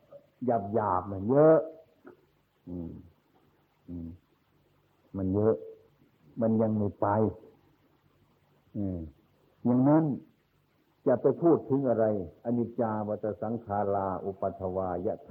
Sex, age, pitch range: male, 60-79, 95-125 Hz